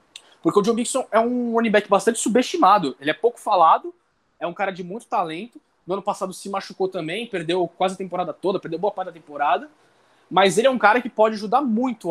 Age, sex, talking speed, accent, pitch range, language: 20-39, male, 220 wpm, Brazilian, 170-225 Hz, Portuguese